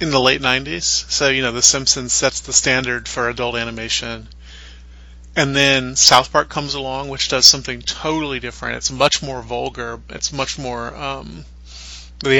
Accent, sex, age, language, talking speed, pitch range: American, male, 30-49, English, 170 wpm, 90-140 Hz